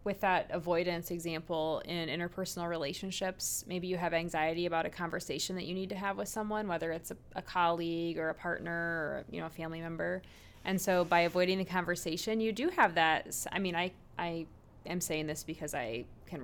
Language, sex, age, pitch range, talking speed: English, female, 20-39, 160-185 Hz, 200 wpm